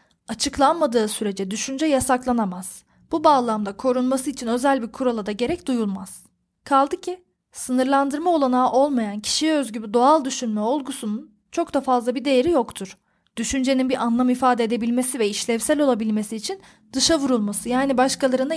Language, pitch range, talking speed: Turkish, 215-275 Hz, 140 wpm